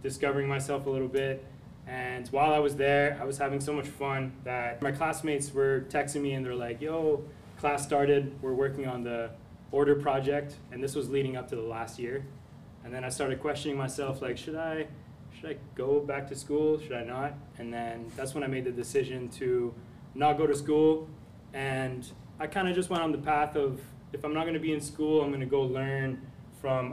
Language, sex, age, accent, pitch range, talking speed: English, male, 20-39, American, 125-145 Hz, 210 wpm